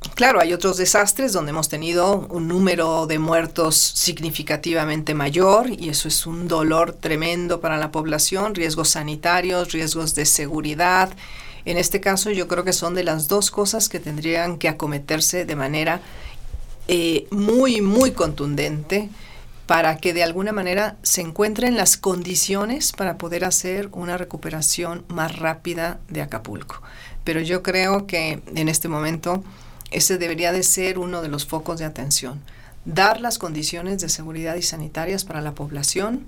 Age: 40-59